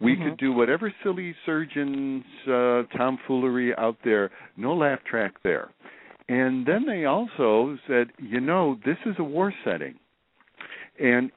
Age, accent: 60-79, American